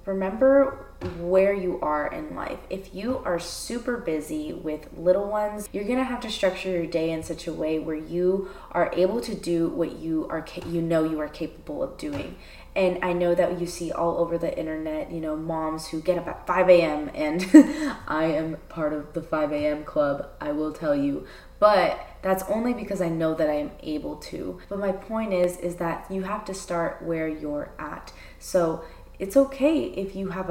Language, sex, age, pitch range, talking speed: English, female, 20-39, 160-190 Hz, 205 wpm